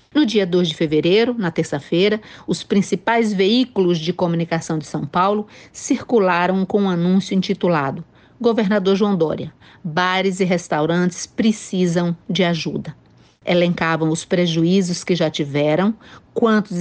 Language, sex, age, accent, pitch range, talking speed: Portuguese, female, 50-69, Brazilian, 170-215 Hz, 130 wpm